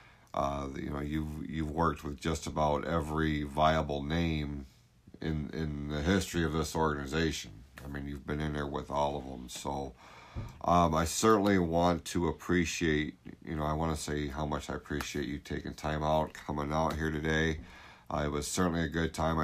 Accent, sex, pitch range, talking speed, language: American, male, 75-95 Hz, 190 wpm, English